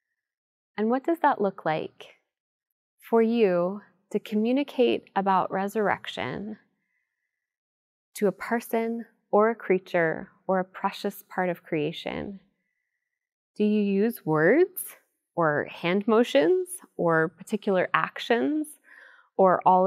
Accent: American